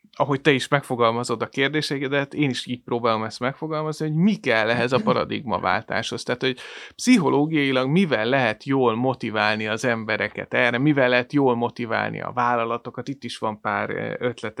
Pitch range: 120-140 Hz